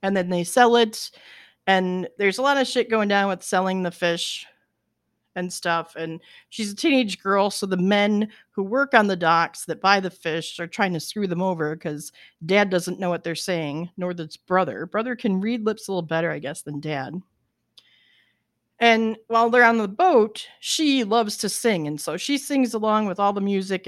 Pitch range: 170-215 Hz